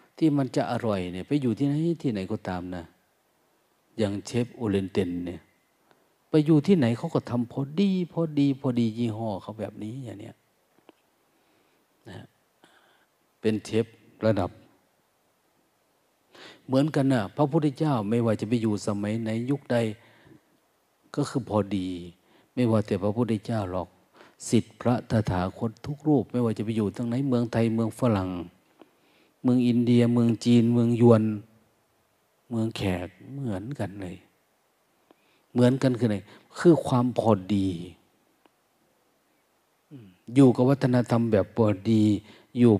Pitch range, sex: 100-125 Hz, male